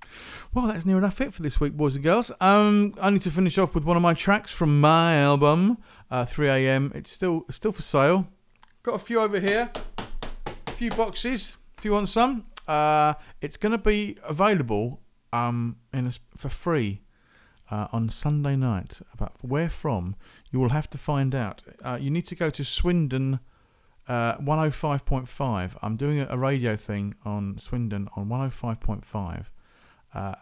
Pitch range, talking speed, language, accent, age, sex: 115-155 Hz, 185 wpm, English, British, 40-59, male